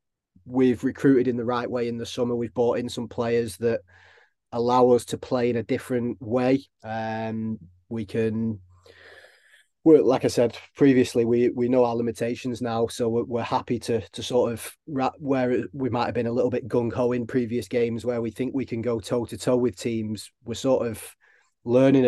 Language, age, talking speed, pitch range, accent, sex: English, 30-49, 190 wpm, 110-120 Hz, British, male